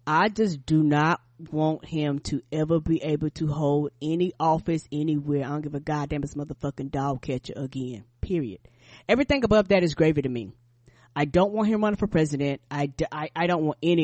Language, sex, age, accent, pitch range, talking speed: English, female, 20-39, American, 155-230 Hz, 195 wpm